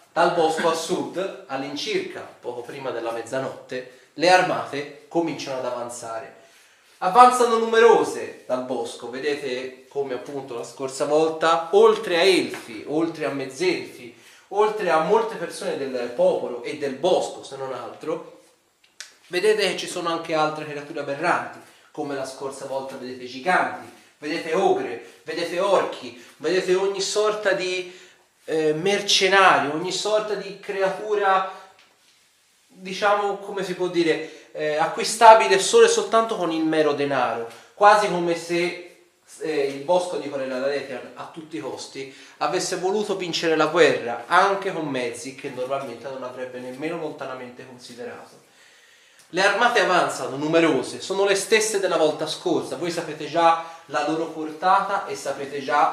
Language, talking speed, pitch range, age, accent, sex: Italian, 140 wpm, 140-195 Hz, 30-49, native, male